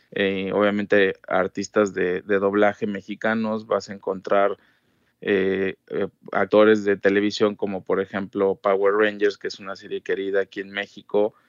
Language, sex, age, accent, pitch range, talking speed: Spanish, male, 20-39, Mexican, 100-115 Hz, 145 wpm